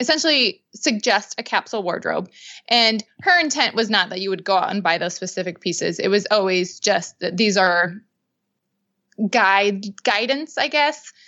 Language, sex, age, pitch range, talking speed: English, female, 20-39, 190-225 Hz, 165 wpm